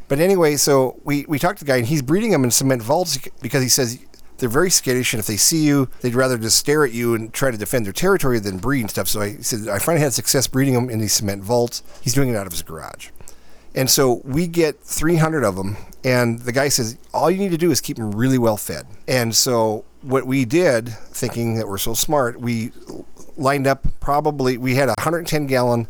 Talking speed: 240 wpm